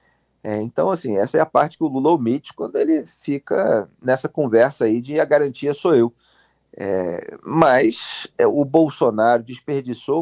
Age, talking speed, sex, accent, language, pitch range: 40-59, 165 wpm, male, Brazilian, Portuguese, 115-160 Hz